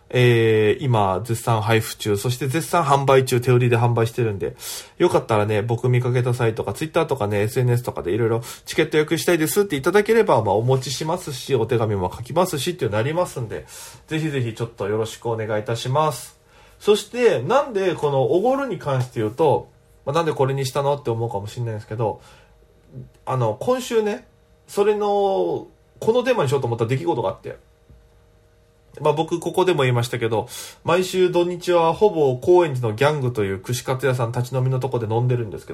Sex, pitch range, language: male, 120-180 Hz, Japanese